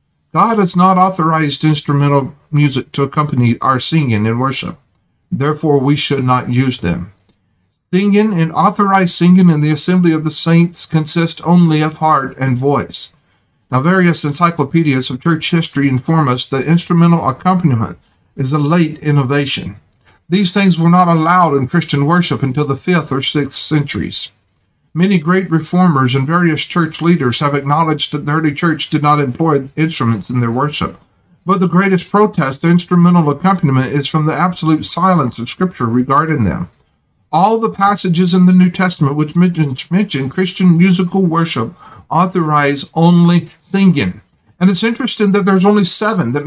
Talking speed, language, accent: 160 wpm, English, American